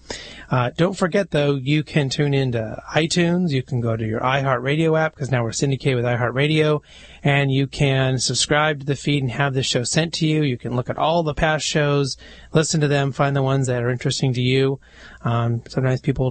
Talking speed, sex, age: 215 wpm, male, 30-49